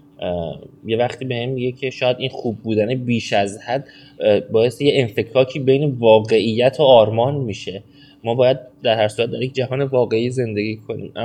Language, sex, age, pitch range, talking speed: Persian, male, 20-39, 100-130 Hz, 170 wpm